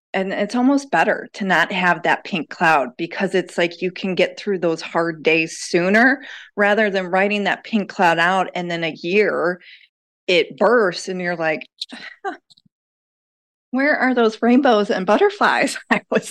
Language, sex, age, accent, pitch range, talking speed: English, female, 30-49, American, 165-225 Hz, 170 wpm